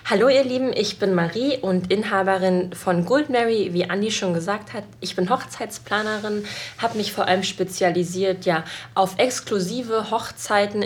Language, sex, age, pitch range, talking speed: German, female, 20-39, 185-210 Hz, 145 wpm